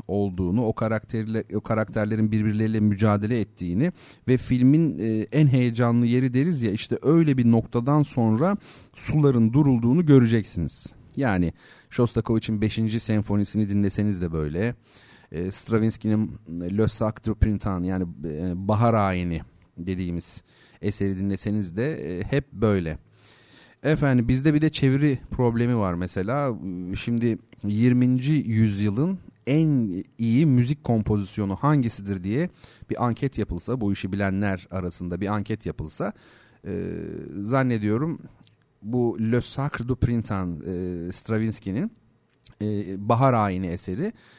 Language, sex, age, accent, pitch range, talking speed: Turkish, male, 40-59, native, 100-130 Hz, 110 wpm